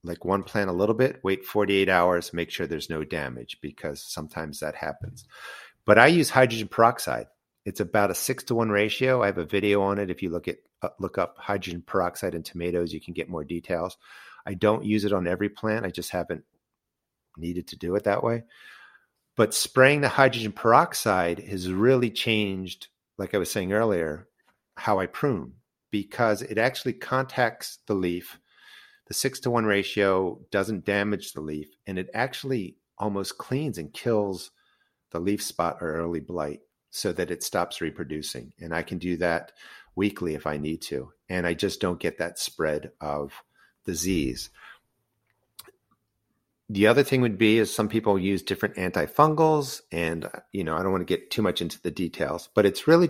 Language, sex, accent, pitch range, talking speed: English, male, American, 85-110 Hz, 185 wpm